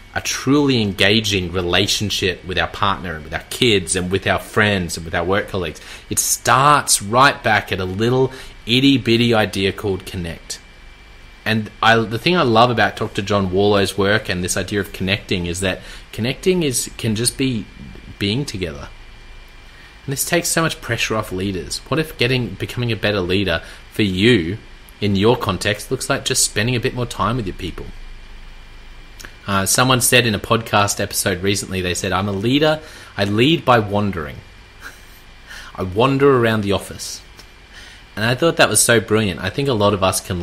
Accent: Australian